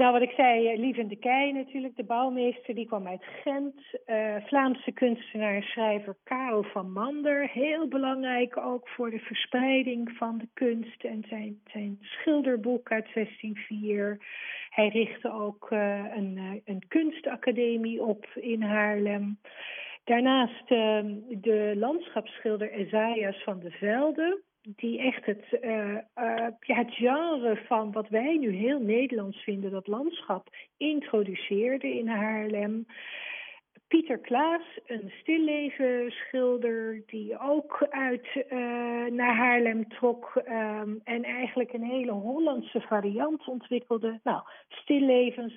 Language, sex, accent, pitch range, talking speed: Dutch, female, Dutch, 210-255 Hz, 125 wpm